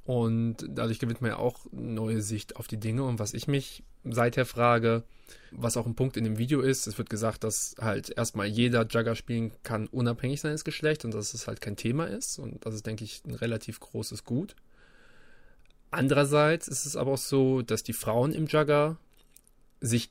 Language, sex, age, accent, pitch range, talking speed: German, male, 20-39, German, 110-135 Hz, 195 wpm